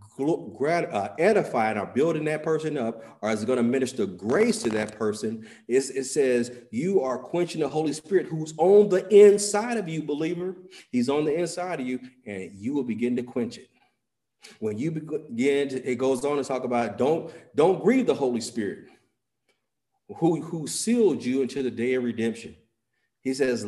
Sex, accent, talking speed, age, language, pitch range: male, American, 180 wpm, 40-59, English, 120-175 Hz